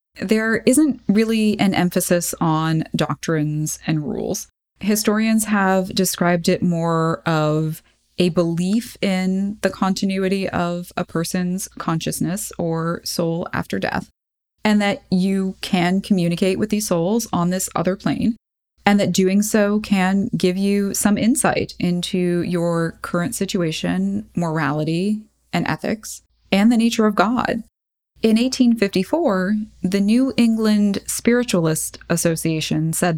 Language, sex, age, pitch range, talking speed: English, female, 20-39, 175-220 Hz, 125 wpm